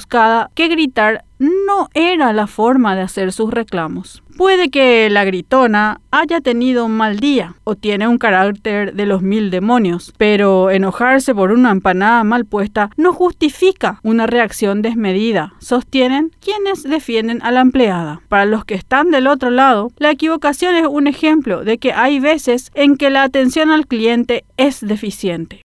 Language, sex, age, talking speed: Spanish, female, 40-59, 160 wpm